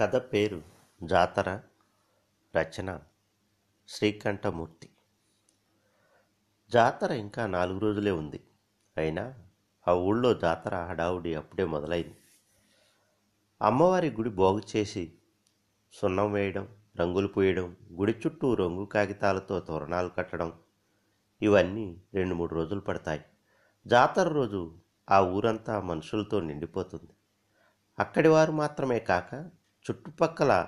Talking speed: 90 wpm